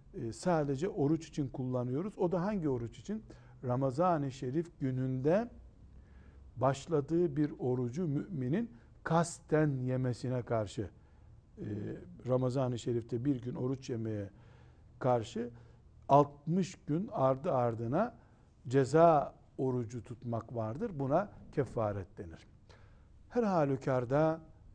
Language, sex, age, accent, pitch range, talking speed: Turkish, male, 60-79, native, 120-160 Hz, 95 wpm